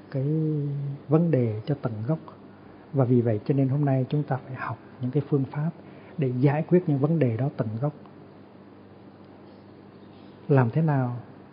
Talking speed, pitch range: 170 wpm, 120-150 Hz